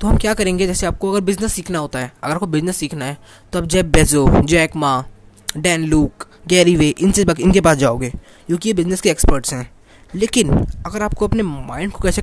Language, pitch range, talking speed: Hindi, 145-195 Hz, 210 wpm